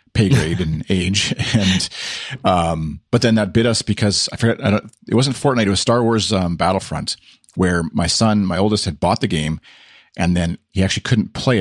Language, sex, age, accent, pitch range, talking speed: English, male, 40-59, American, 85-105 Hz, 205 wpm